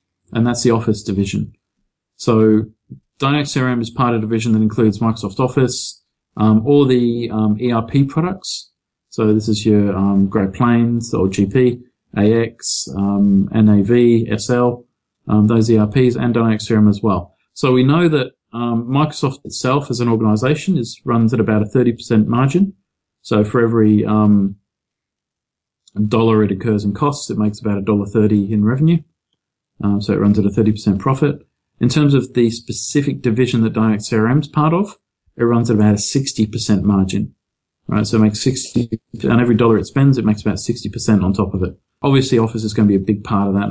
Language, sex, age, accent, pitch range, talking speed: English, male, 40-59, Australian, 105-125 Hz, 190 wpm